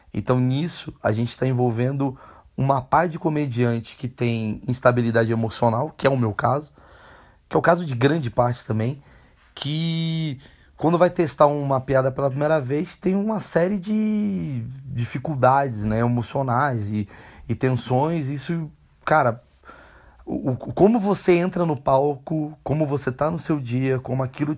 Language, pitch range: Portuguese, 120-150 Hz